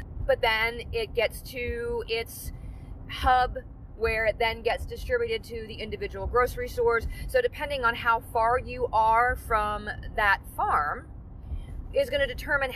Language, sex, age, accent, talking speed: English, female, 30-49, American, 145 wpm